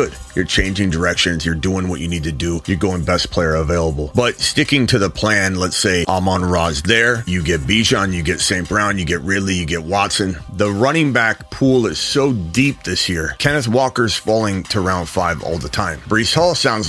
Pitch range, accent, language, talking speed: 90-125 Hz, American, English, 210 wpm